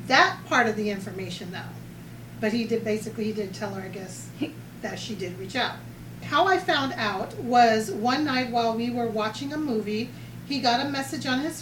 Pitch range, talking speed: 220-275 Hz, 205 wpm